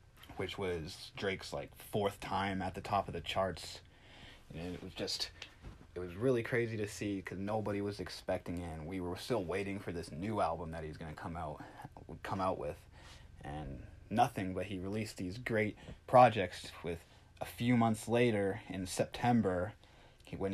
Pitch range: 90-105 Hz